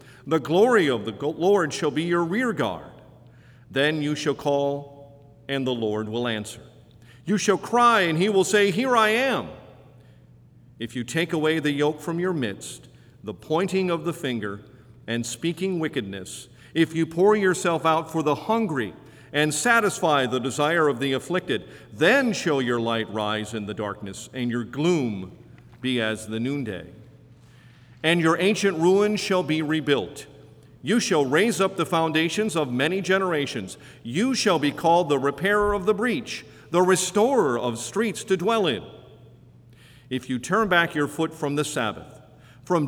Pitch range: 125-180 Hz